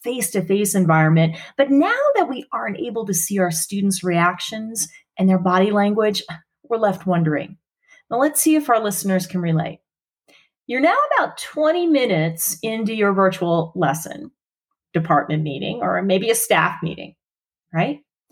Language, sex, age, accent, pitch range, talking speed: English, female, 30-49, American, 180-290 Hz, 145 wpm